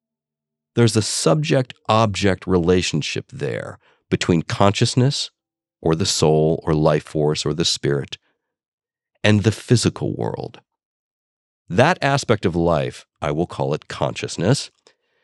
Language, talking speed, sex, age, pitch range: English, 115 wpm, male, 50-69, 90-120 Hz